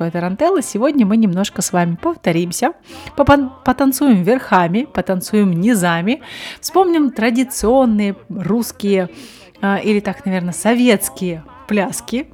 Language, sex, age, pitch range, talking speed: Russian, female, 30-49, 190-240 Hz, 105 wpm